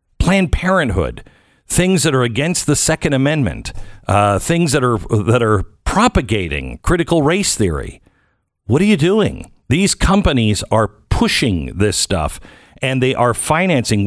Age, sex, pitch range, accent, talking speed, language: 50-69, male, 110-165 Hz, American, 140 wpm, English